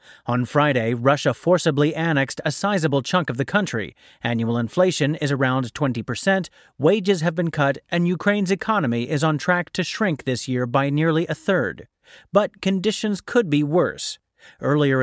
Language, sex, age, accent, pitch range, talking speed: English, male, 30-49, American, 130-180 Hz, 165 wpm